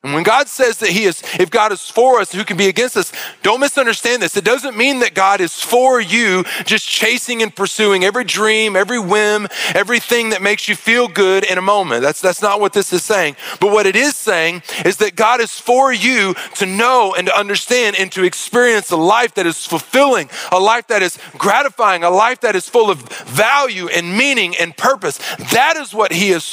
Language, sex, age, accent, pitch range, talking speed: English, male, 40-59, American, 170-240 Hz, 220 wpm